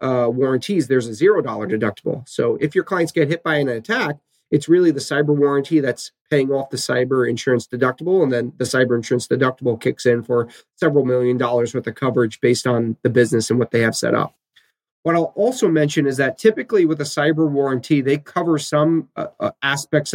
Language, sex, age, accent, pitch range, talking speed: English, male, 30-49, American, 130-155 Hz, 205 wpm